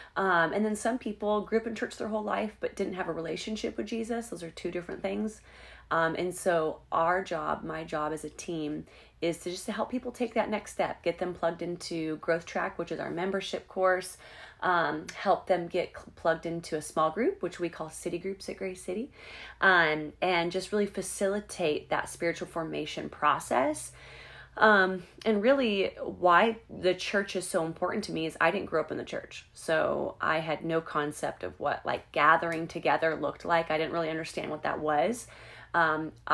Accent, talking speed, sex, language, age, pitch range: American, 200 wpm, female, English, 30-49, 160-195 Hz